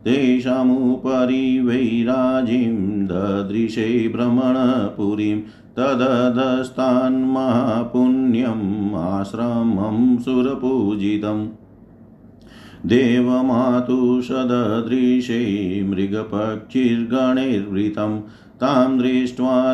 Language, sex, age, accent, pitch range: Hindi, male, 50-69, native, 105-125 Hz